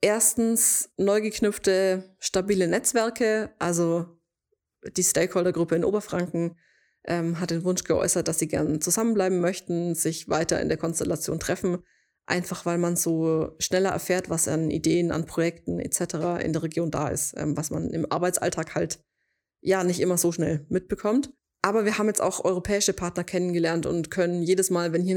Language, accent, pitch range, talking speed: German, German, 170-195 Hz, 165 wpm